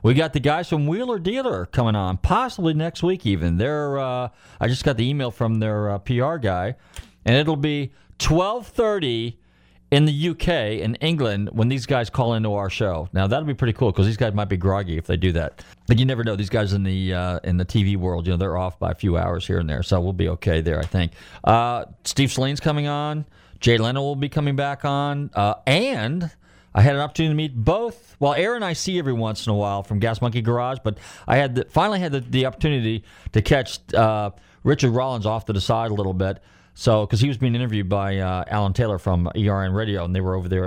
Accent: American